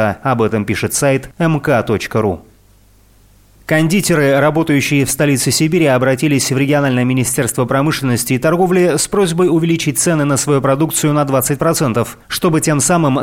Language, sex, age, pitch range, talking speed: Russian, male, 30-49, 125-160 Hz, 130 wpm